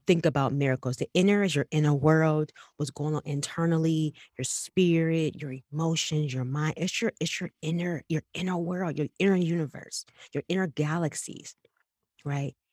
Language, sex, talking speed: English, female, 160 wpm